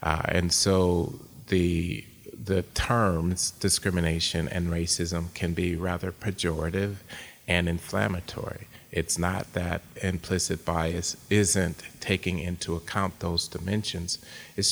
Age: 30-49